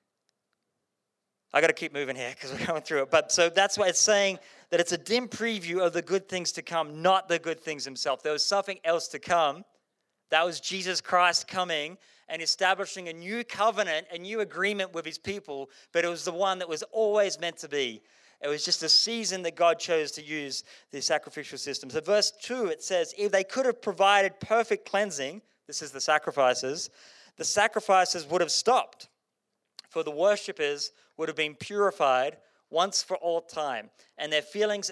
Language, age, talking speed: English, 30-49, 195 wpm